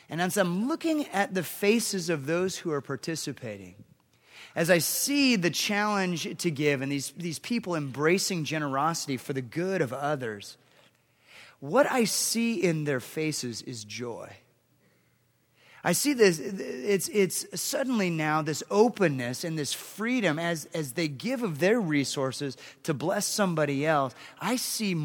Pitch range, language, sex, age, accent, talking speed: 145-200 Hz, English, male, 30-49, American, 150 wpm